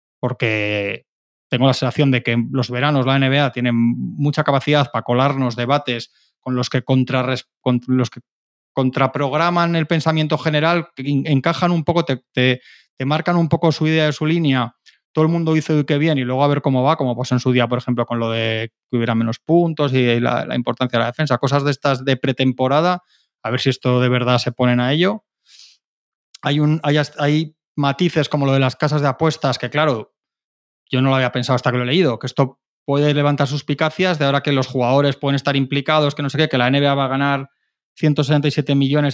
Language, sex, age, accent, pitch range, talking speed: Spanish, male, 20-39, Spanish, 125-150 Hz, 215 wpm